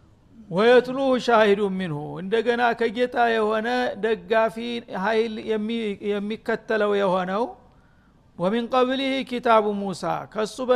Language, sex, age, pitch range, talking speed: Amharic, male, 50-69, 205-225 Hz, 100 wpm